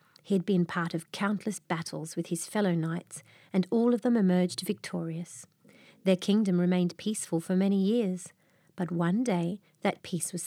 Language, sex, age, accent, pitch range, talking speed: English, female, 40-59, Australian, 170-205 Hz, 170 wpm